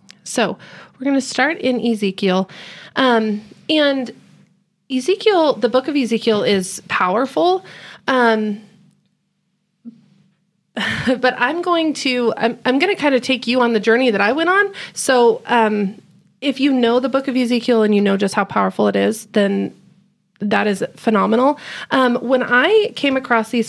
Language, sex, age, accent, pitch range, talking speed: English, female, 30-49, American, 195-250 Hz, 160 wpm